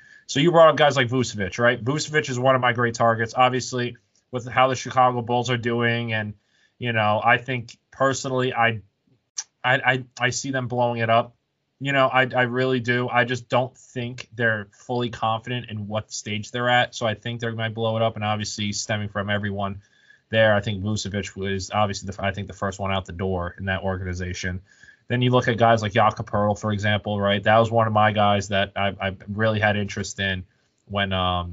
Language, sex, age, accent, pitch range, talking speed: English, male, 20-39, American, 100-120 Hz, 215 wpm